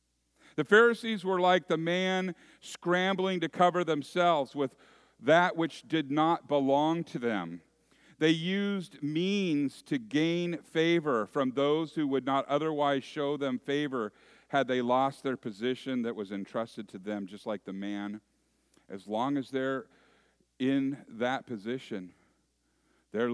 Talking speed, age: 140 wpm, 50-69